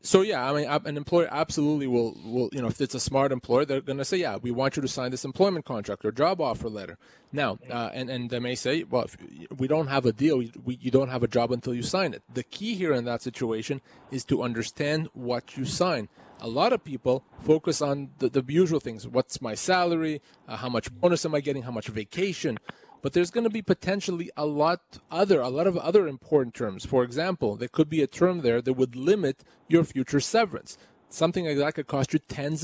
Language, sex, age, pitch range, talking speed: English, male, 30-49, 125-165 Hz, 235 wpm